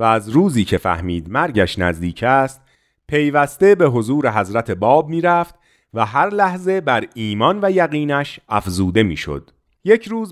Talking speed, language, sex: 140 wpm, Persian, male